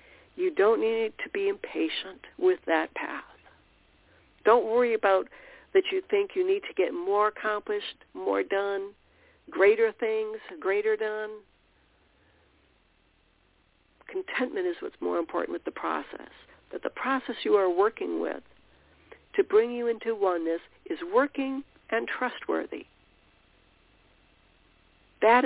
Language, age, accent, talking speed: English, 60-79, American, 125 wpm